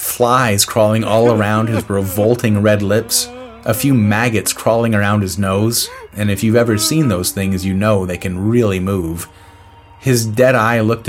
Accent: American